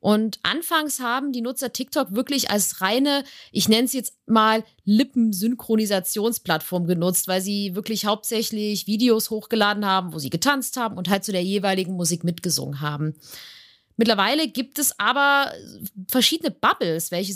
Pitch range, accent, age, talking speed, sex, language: 180-245 Hz, German, 30-49, 145 wpm, female, German